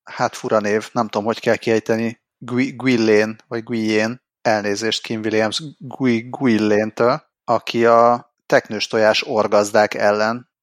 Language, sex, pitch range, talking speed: Hungarian, male, 105-120 Hz, 120 wpm